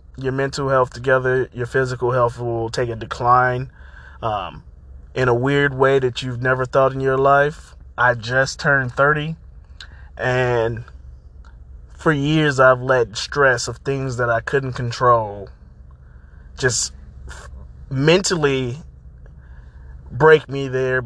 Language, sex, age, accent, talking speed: English, male, 20-39, American, 125 wpm